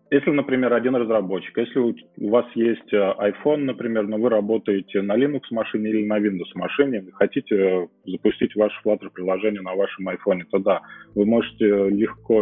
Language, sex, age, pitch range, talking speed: Russian, male, 30-49, 95-115 Hz, 155 wpm